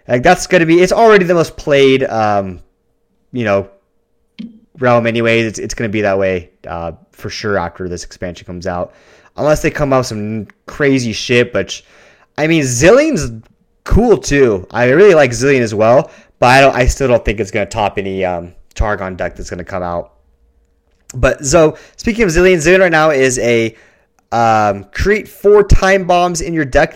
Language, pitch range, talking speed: English, 105-155 Hz, 200 wpm